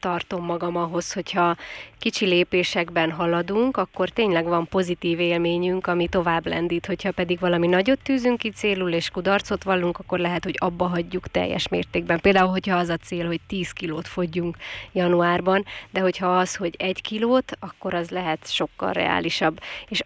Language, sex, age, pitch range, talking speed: Hungarian, female, 20-39, 175-190 Hz, 160 wpm